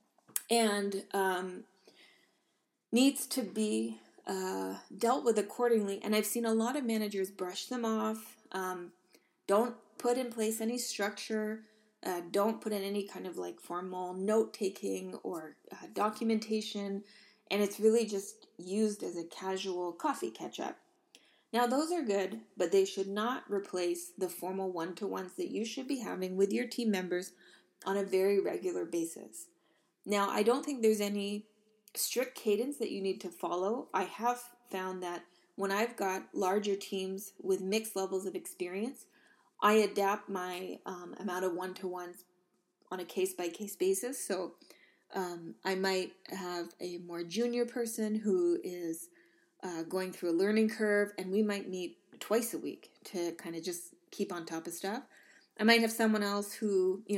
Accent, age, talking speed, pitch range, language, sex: American, 20-39, 160 wpm, 185-220 Hz, English, female